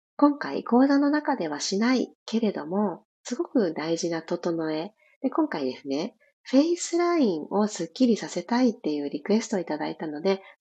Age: 40-59